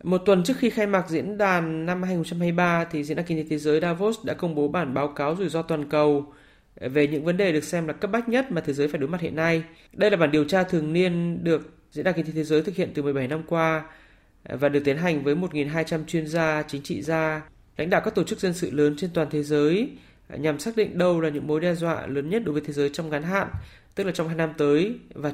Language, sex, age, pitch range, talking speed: Vietnamese, male, 20-39, 150-180 Hz, 270 wpm